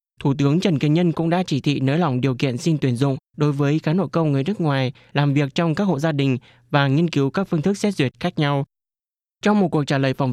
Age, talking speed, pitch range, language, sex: 20-39, 275 wpm, 135-170 Hz, Vietnamese, male